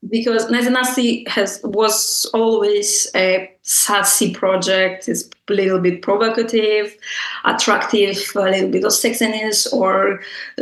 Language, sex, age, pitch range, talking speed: English, female, 20-39, 185-230 Hz, 115 wpm